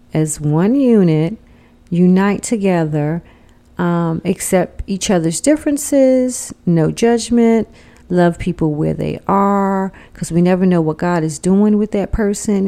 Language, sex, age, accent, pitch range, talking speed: English, female, 40-59, American, 170-205 Hz, 135 wpm